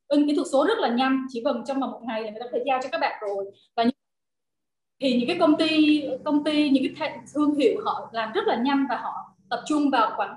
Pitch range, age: 225-295 Hz, 20-39